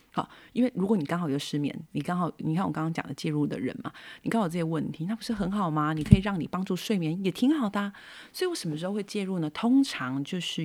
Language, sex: Chinese, female